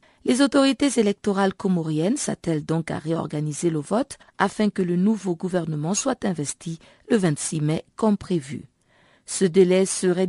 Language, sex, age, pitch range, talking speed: French, female, 50-69, 160-210 Hz, 145 wpm